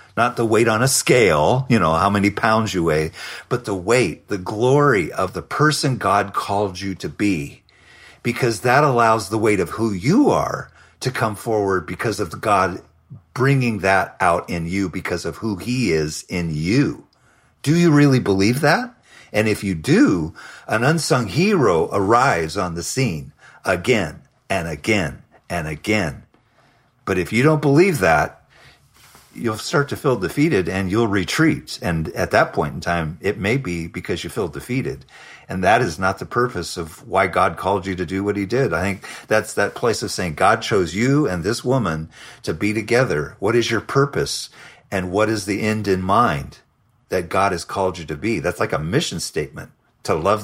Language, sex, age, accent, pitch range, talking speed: English, male, 40-59, American, 95-130 Hz, 190 wpm